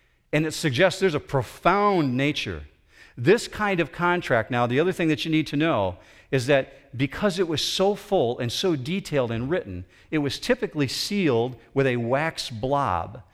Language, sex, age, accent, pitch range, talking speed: English, male, 50-69, American, 115-160 Hz, 180 wpm